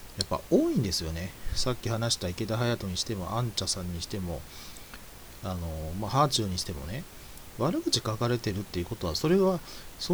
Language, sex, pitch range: Japanese, male, 90-140 Hz